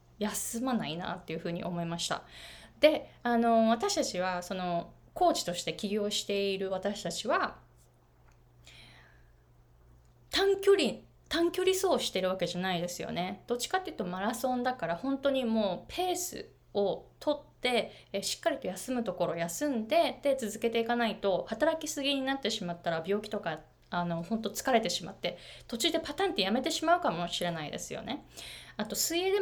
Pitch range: 175-285 Hz